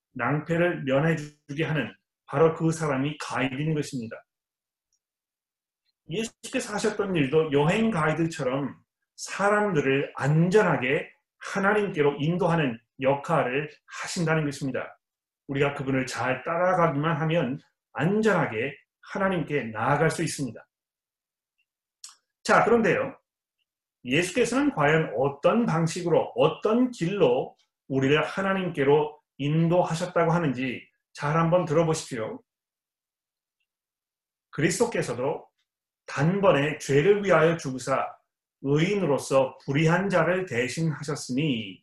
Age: 30-49